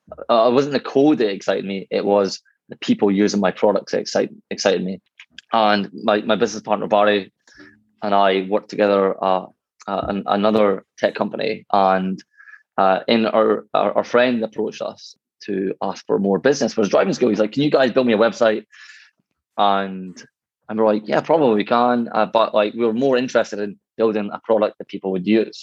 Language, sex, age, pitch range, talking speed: English, male, 20-39, 100-120 Hz, 200 wpm